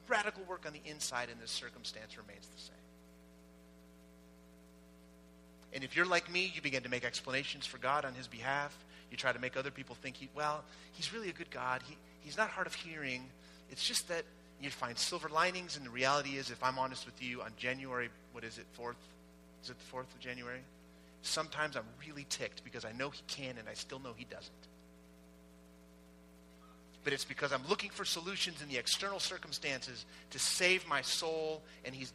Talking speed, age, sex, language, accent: 200 wpm, 30-49, male, English, American